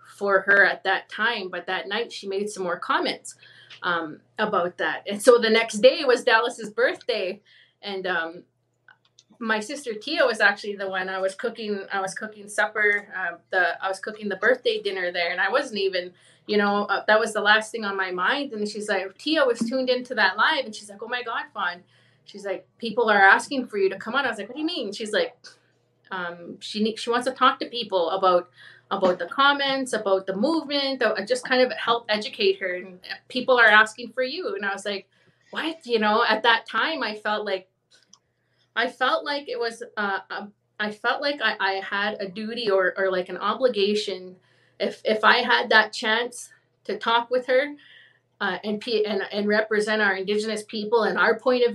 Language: English